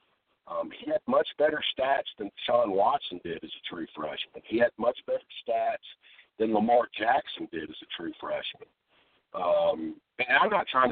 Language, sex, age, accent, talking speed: English, male, 50-69, American, 175 wpm